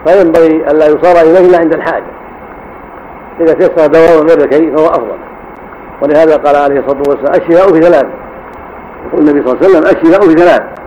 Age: 60-79